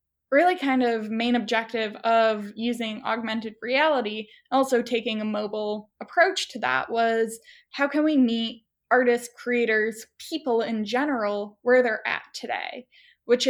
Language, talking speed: English, 140 wpm